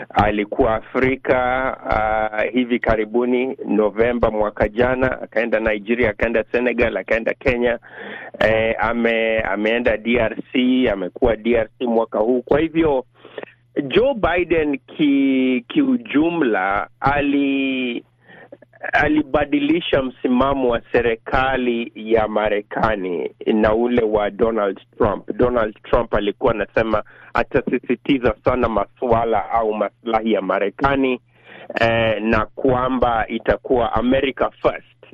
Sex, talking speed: male, 95 wpm